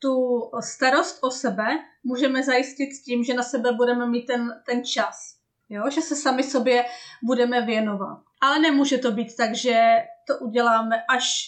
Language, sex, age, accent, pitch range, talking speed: Czech, female, 30-49, native, 225-255 Hz, 165 wpm